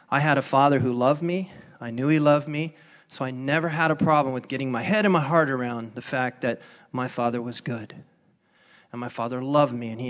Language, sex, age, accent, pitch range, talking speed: English, male, 40-59, American, 130-175 Hz, 240 wpm